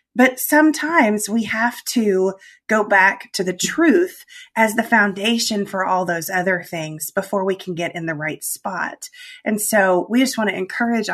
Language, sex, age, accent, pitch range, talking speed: English, female, 30-49, American, 180-235 Hz, 180 wpm